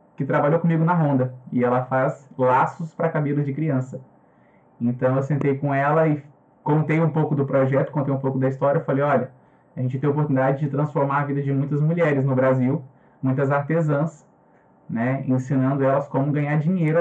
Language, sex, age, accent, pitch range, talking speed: Portuguese, male, 20-39, Brazilian, 130-155 Hz, 185 wpm